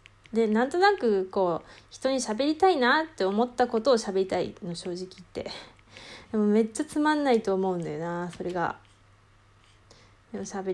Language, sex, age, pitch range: Japanese, female, 20-39, 180-260 Hz